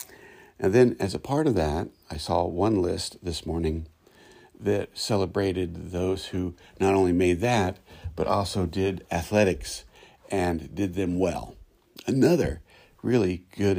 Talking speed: 140 wpm